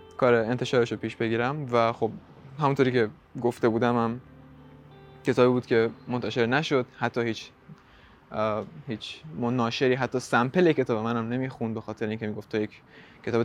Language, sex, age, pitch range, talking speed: Persian, male, 20-39, 115-140 Hz, 145 wpm